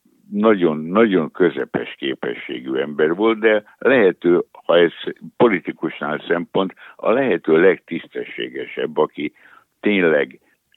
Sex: male